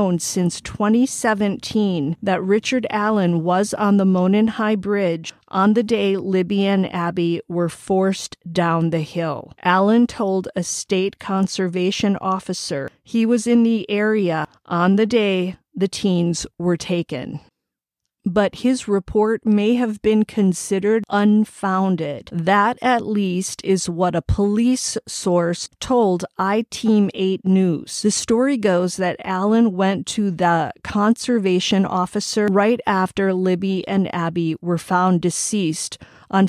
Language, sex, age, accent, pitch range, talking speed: English, female, 40-59, American, 175-210 Hz, 130 wpm